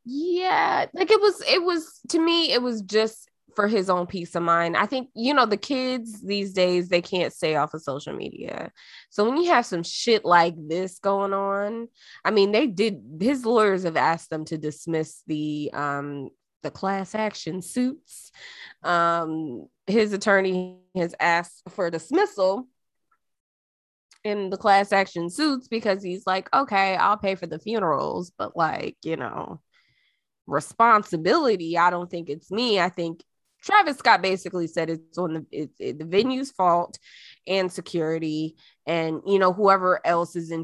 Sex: female